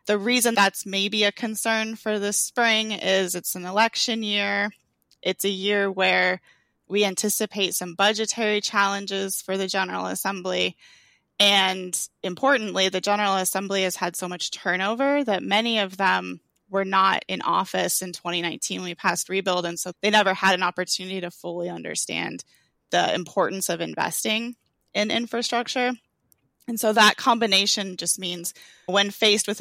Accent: American